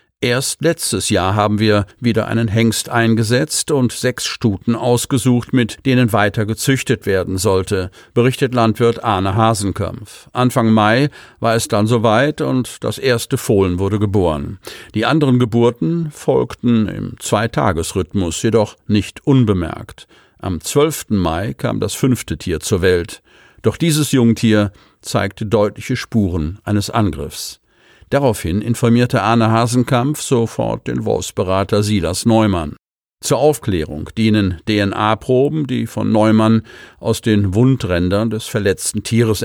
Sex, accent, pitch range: male, German, 105-125 Hz